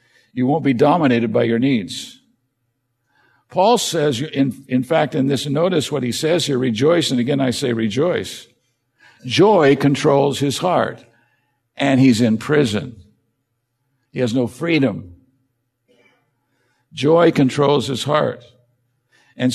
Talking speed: 130 wpm